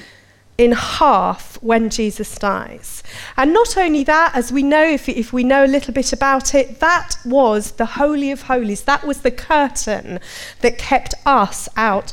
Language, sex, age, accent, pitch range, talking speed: English, female, 40-59, British, 240-310 Hz, 175 wpm